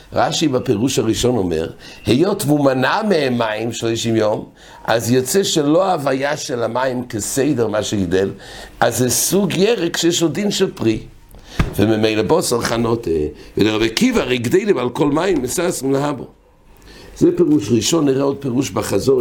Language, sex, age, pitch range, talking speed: English, male, 60-79, 110-155 Hz, 145 wpm